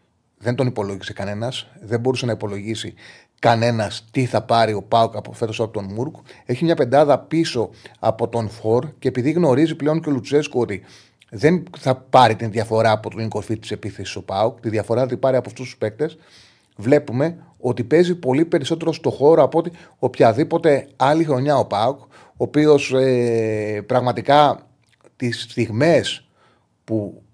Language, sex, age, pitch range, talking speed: Greek, male, 30-49, 110-145 Hz, 165 wpm